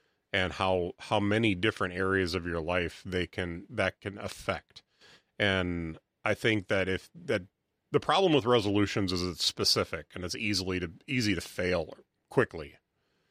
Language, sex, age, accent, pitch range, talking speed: English, male, 30-49, American, 90-110 Hz, 160 wpm